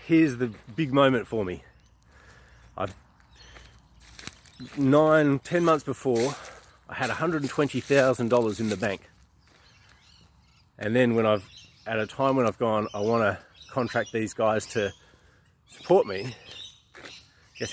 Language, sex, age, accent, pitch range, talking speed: English, male, 30-49, Australian, 100-130 Hz, 125 wpm